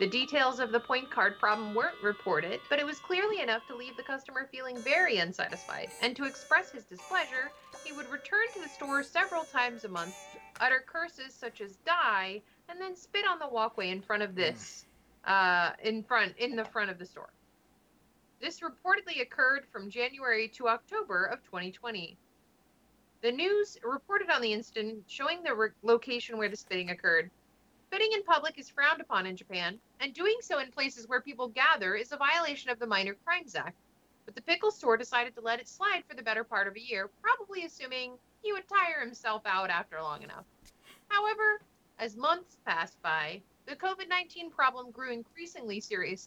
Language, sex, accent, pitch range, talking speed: English, female, American, 220-325 Hz, 185 wpm